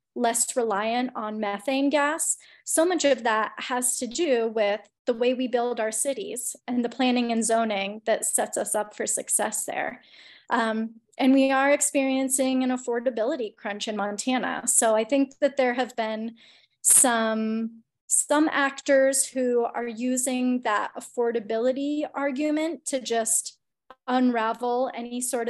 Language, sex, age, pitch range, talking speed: English, female, 20-39, 225-265 Hz, 145 wpm